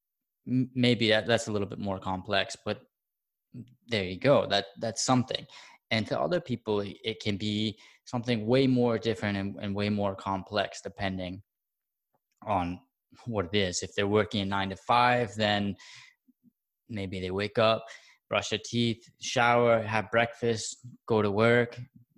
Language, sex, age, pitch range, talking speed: English, male, 20-39, 100-120 Hz, 150 wpm